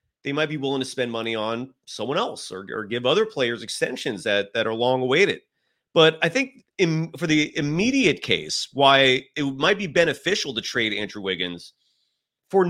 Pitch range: 135-190 Hz